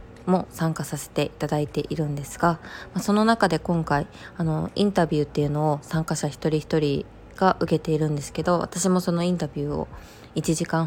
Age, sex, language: 20-39, female, Japanese